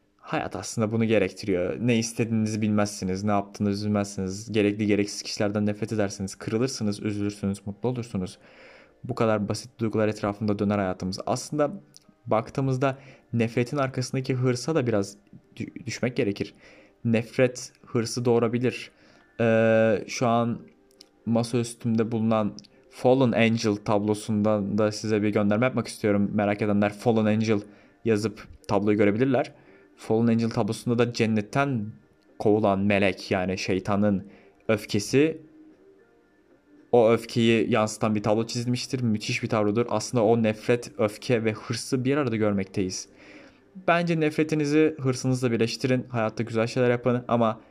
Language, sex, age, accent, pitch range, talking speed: Turkish, male, 20-39, native, 105-125 Hz, 120 wpm